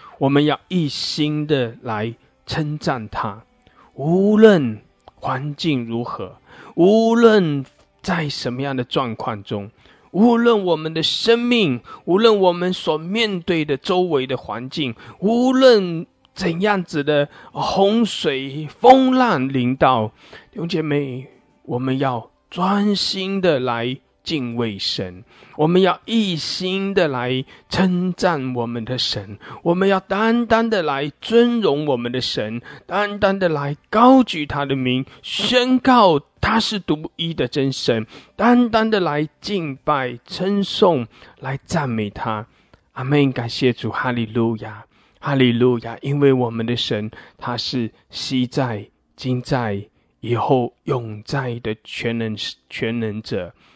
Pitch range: 120-185 Hz